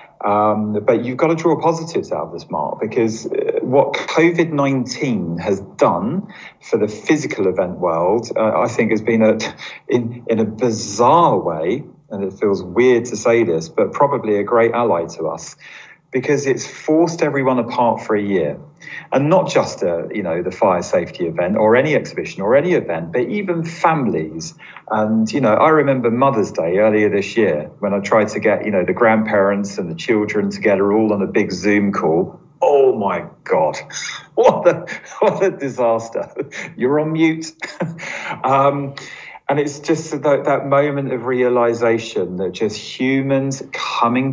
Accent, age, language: British, 40-59, English